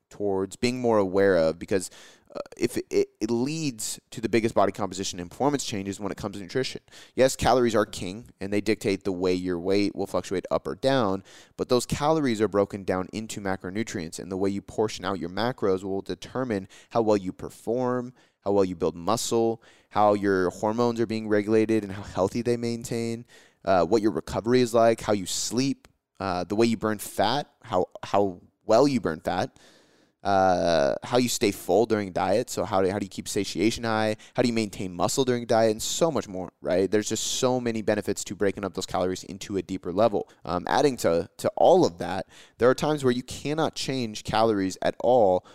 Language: English